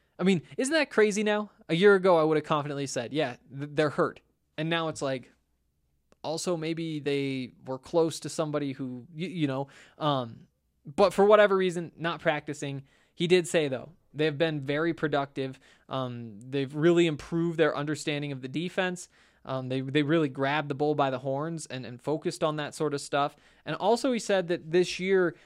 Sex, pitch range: male, 135-175 Hz